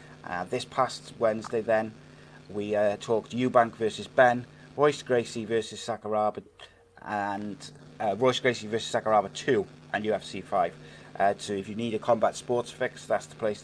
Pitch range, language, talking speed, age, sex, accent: 105-125 Hz, English, 165 wpm, 30-49, male, British